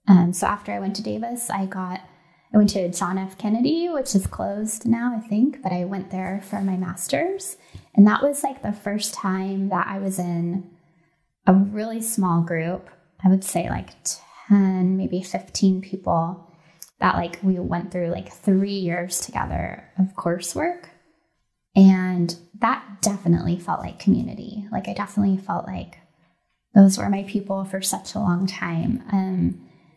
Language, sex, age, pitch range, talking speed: English, female, 10-29, 175-210 Hz, 165 wpm